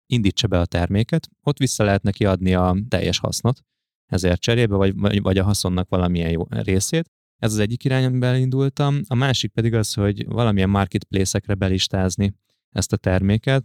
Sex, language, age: male, Hungarian, 20-39